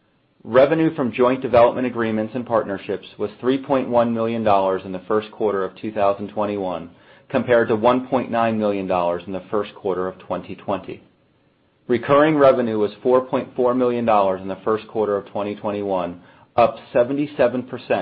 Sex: male